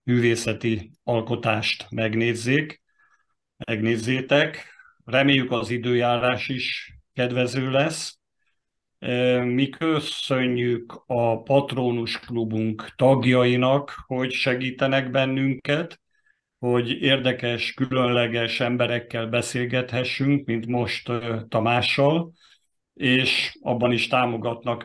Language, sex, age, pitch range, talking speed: Hungarian, male, 50-69, 115-130 Hz, 75 wpm